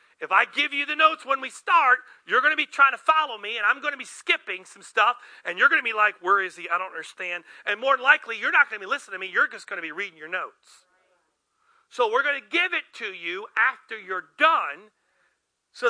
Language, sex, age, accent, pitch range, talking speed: English, male, 40-59, American, 220-285 Hz, 255 wpm